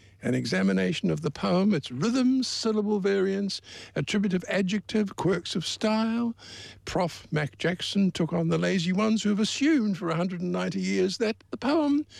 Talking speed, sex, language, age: 150 wpm, male, English, 60-79